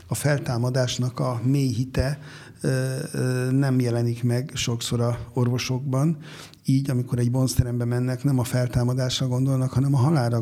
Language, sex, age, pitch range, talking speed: Hungarian, male, 60-79, 120-135 Hz, 125 wpm